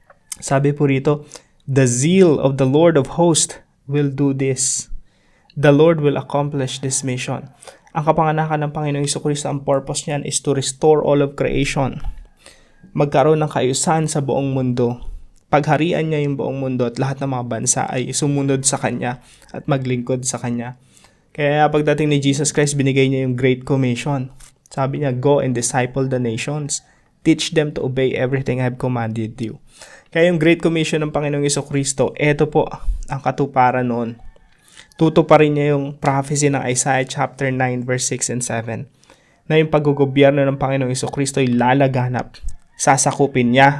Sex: male